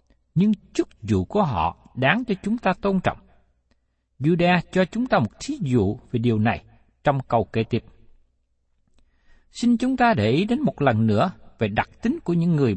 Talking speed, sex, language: 190 wpm, male, Vietnamese